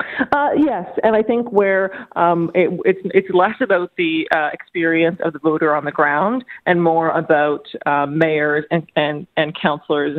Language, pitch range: English, 155-185 Hz